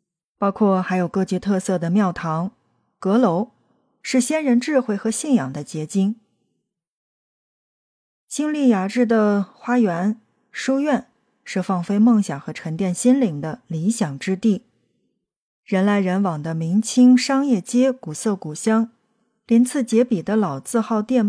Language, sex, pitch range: Chinese, female, 180-245 Hz